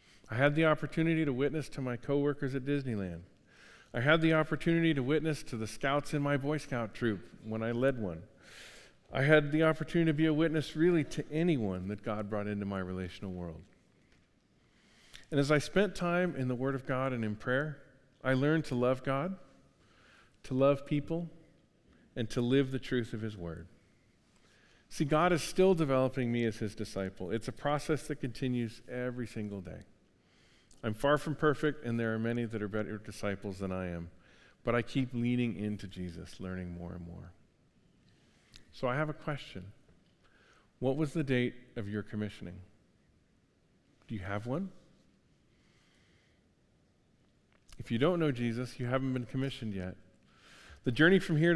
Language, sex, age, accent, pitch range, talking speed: English, male, 50-69, American, 105-150 Hz, 170 wpm